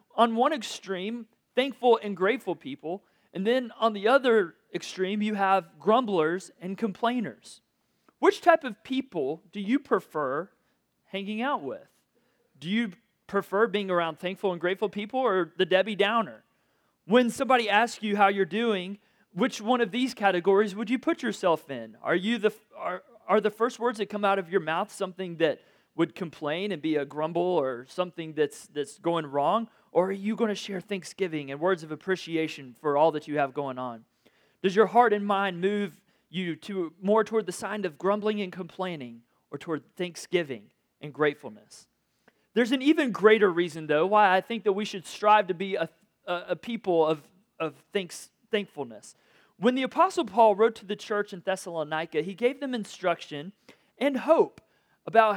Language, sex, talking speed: English, male, 180 wpm